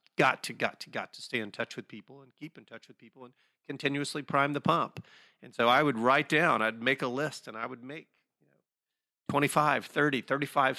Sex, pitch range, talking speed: male, 120-145 Hz, 215 wpm